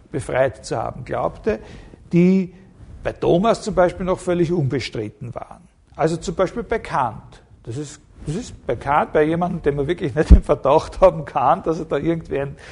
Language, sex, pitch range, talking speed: German, male, 130-180 Hz, 185 wpm